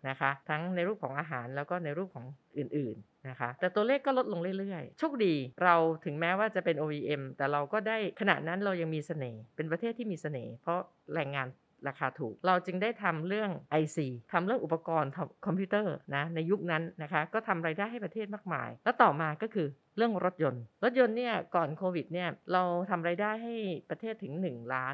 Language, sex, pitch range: Thai, female, 145-190 Hz